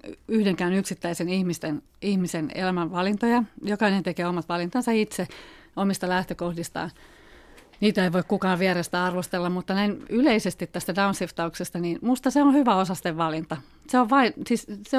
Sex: female